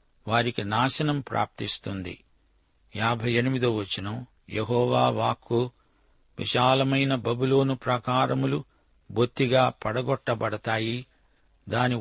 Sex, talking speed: male, 70 wpm